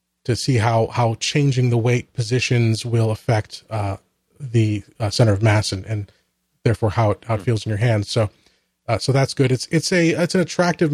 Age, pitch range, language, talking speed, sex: 30-49, 115-130 Hz, English, 210 wpm, male